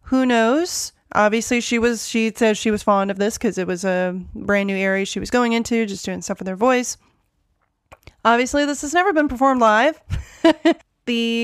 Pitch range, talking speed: 215-270 Hz, 195 wpm